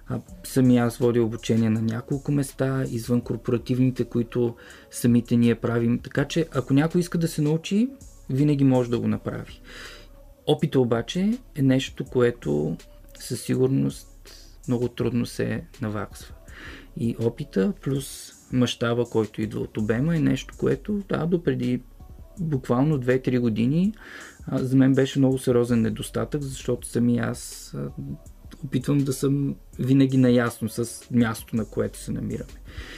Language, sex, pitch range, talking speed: Bulgarian, male, 115-140 Hz, 135 wpm